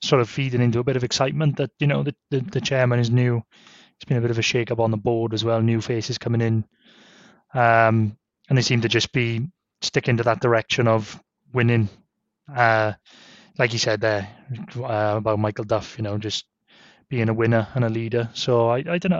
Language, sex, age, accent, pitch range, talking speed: English, male, 20-39, British, 115-140 Hz, 215 wpm